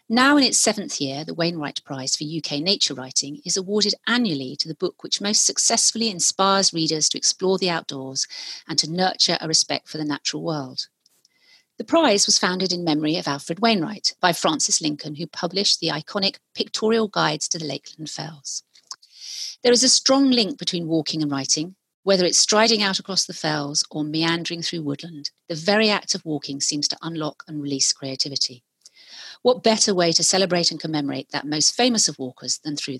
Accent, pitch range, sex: British, 145-195 Hz, female